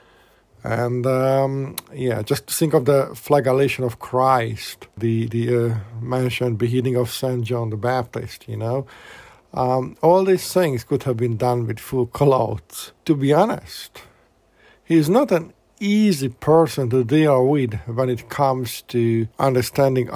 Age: 50-69